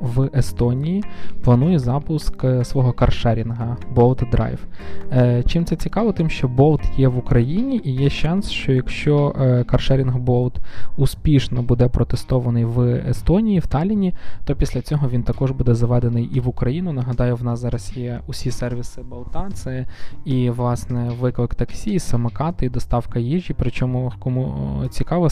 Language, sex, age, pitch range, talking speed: Ukrainian, male, 20-39, 120-135 Hz, 155 wpm